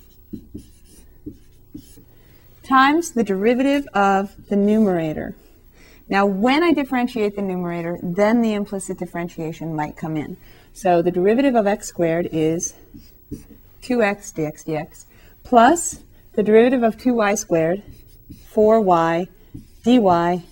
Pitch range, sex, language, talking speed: 170-230 Hz, female, English, 110 wpm